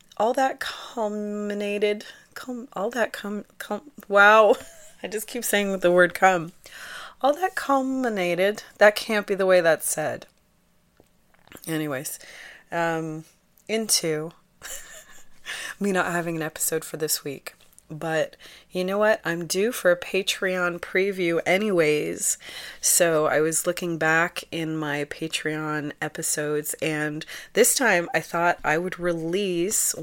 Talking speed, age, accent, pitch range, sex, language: 130 wpm, 30-49, American, 150-185 Hz, female, English